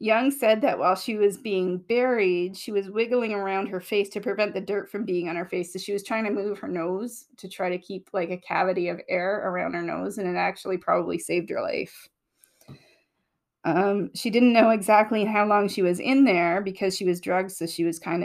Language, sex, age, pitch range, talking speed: English, female, 30-49, 185-215 Hz, 225 wpm